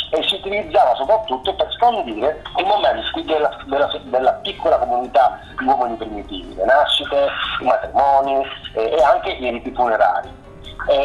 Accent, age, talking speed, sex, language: native, 40-59, 145 wpm, male, Italian